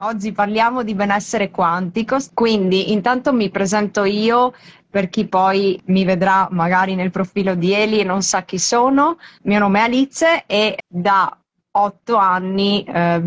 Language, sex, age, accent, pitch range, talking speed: Italian, female, 20-39, native, 185-220 Hz, 155 wpm